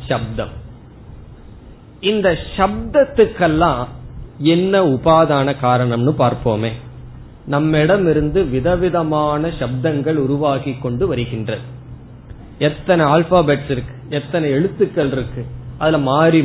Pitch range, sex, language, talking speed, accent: 125-170 Hz, male, Tamil, 50 wpm, native